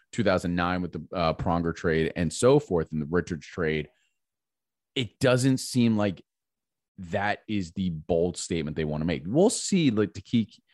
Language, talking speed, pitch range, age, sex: English, 175 wpm, 90-120 Hz, 30-49, male